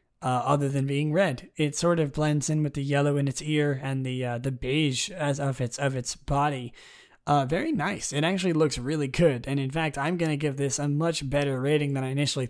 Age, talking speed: 20-39, 235 wpm